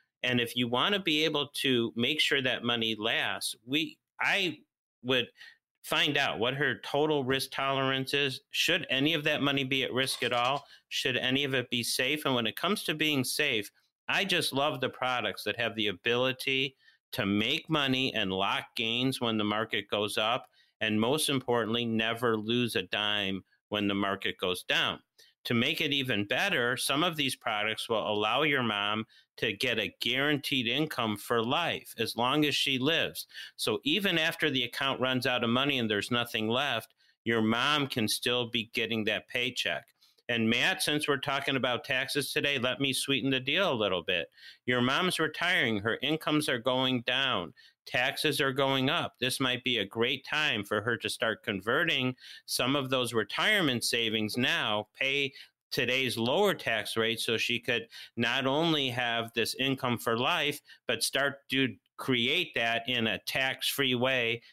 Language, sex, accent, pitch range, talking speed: English, male, American, 115-140 Hz, 180 wpm